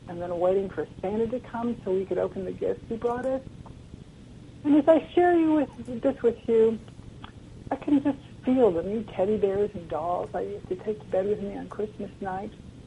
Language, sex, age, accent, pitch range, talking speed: English, female, 60-79, American, 185-250 Hz, 205 wpm